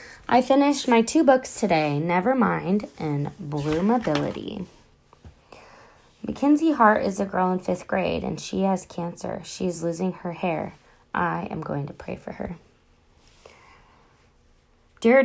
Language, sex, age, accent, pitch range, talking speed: English, female, 20-39, American, 175-230 Hz, 135 wpm